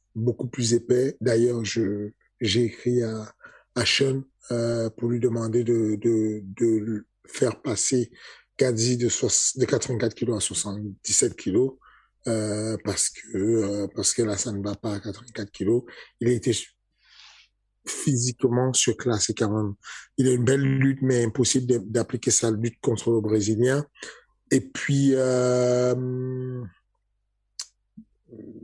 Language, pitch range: French, 115-130 Hz